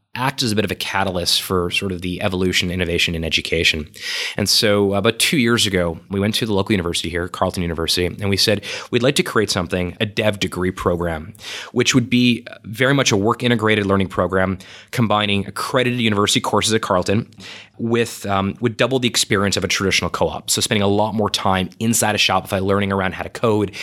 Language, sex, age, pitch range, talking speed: English, male, 20-39, 95-110 Hz, 205 wpm